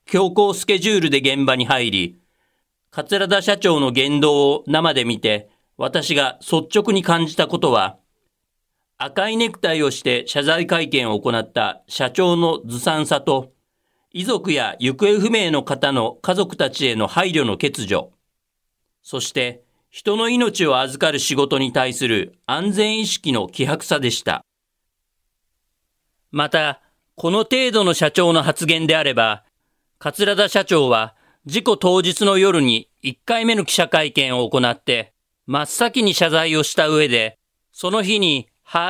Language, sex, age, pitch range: Japanese, male, 40-59, 130-195 Hz